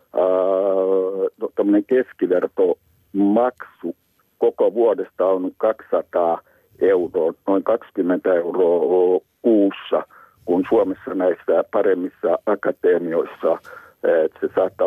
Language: Finnish